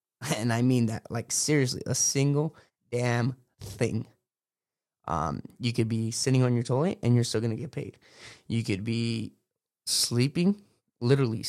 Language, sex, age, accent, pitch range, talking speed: English, male, 20-39, American, 120-155 Hz, 155 wpm